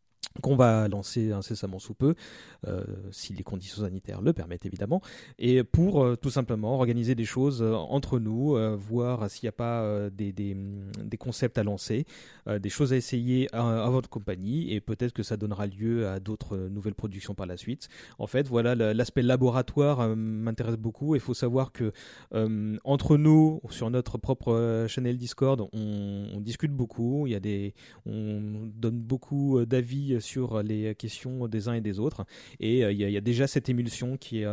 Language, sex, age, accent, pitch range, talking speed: French, male, 30-49, French, 105-130 Hz, 185 wpm